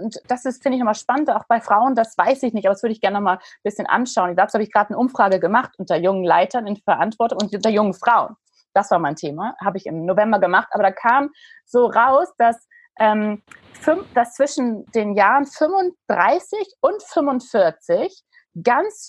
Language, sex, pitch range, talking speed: German, female, 195-260 Hz, 200 wpm